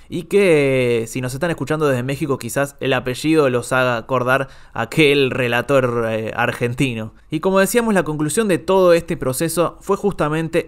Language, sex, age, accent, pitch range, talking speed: Spanish, male, 20-39, Argentinian, 130-170 Hz, 165 wpm